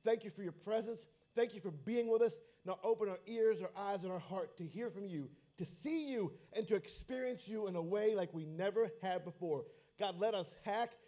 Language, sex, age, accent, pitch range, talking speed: English, male, 50-69, American, 170-225 Hz, 235 wpm